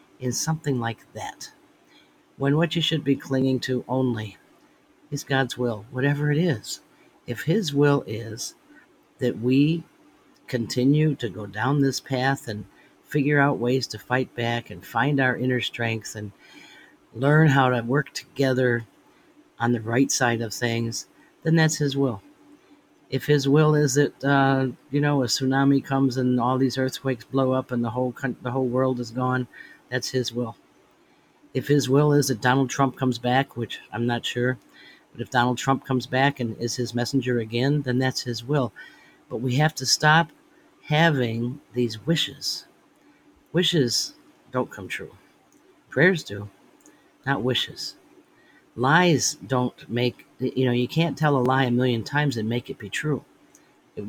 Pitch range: 120-140 Hz